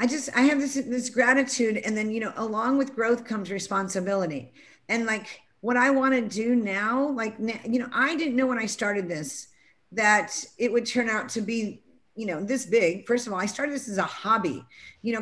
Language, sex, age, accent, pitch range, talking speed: English, female, 50-69, American, 210-250 Hz, 225 wpm